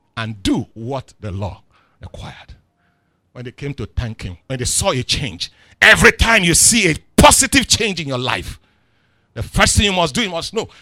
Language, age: English, 50-69